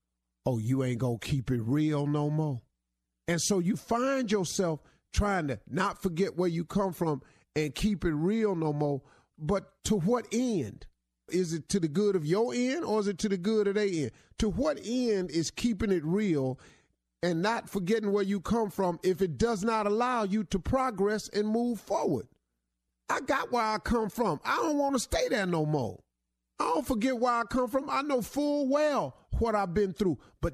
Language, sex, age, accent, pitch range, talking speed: English, male, 40-59, American, 135-220 Hz, 205 wpm